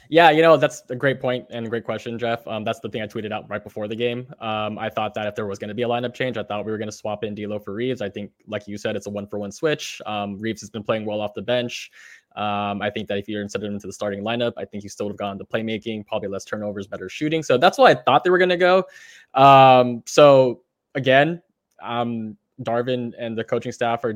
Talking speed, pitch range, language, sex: 275 wpm, 105-130 Hz, English, male